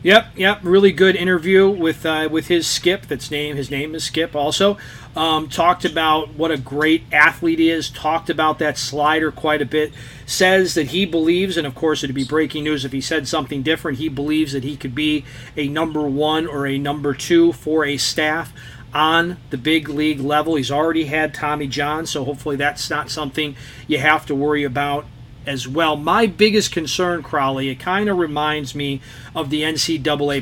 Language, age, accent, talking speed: English, 40-59, American, 195 wpm